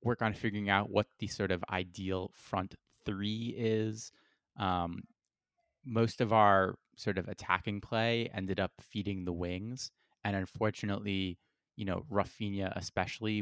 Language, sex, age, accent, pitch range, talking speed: English, male, 20-39, American, 95-110 Hz, 140 wpm